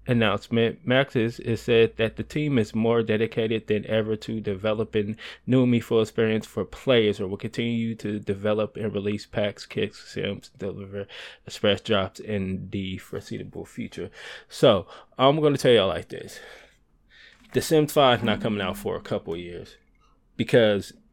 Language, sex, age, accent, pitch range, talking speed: English, male, 20-39, American, 105-125 Hz, 160 wpm